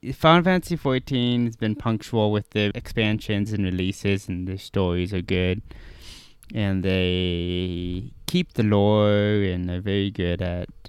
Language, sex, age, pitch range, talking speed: English, male, 20-39, 95-115 Hz, 145 wpm